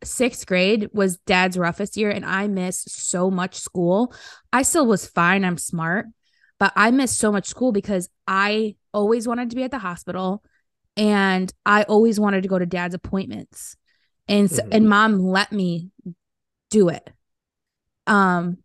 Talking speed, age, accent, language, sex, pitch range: 165 wpm, 20-39, American, English, female, 185-220 Hz